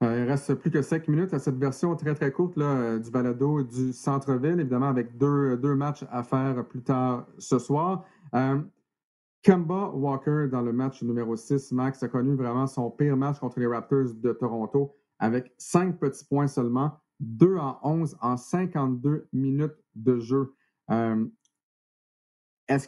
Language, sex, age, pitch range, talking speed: French, male, 40-59, 120-145 Hz, 155 wpm